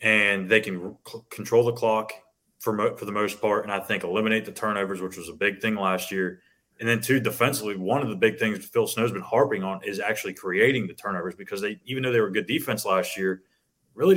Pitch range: 105-125 Hz